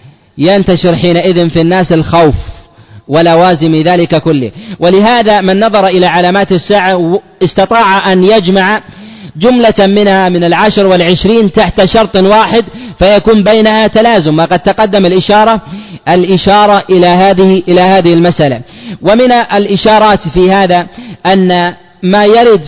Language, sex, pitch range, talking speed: Arabic, male, 165-205 Hz, 115 wpm